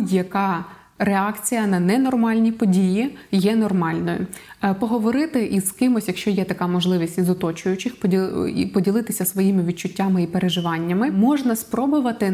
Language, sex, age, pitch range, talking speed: Ukrainian, female, 20-39, 185-230 Hz, 110 wpm